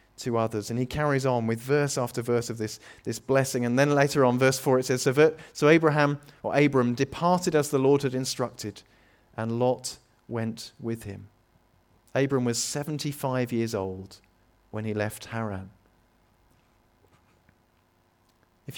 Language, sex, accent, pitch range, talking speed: English, male, British, 105-130 Hz, 155 wpm